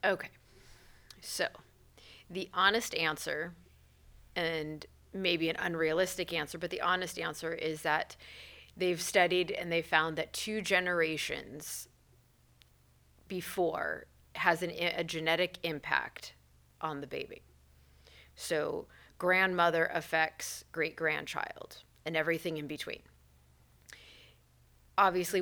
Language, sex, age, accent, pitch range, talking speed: English, female, 30-49, American, 150-180 Hz, 100 wpm